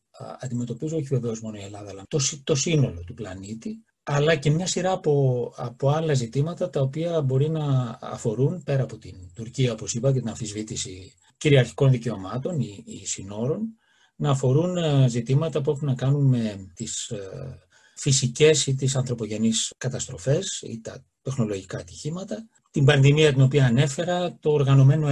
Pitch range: 120-155 Hz